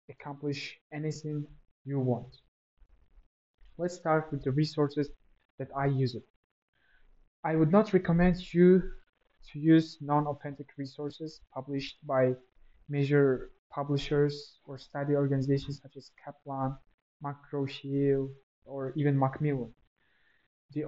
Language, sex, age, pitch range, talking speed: English, male, 20-39, 135-155 Hz, 105 wpm